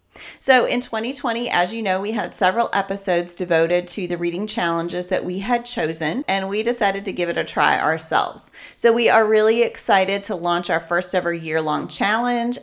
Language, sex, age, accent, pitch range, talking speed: English, female, 30-49, American, 170-230 Hz, 190 wpm